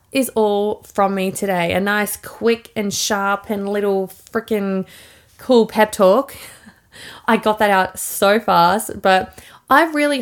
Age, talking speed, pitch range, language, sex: 20-39, 145 wpm, 185-220 Hz, English, female